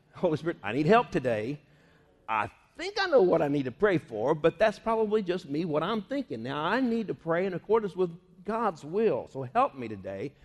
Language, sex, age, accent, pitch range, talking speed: English, male, 50-69, American, 145-205 Hz, 235 wpm